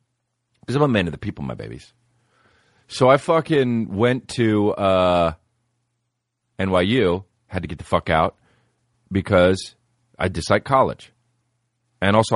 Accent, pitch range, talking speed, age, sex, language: American, 85-120 Hz, 135 wpm, 40-59, male, English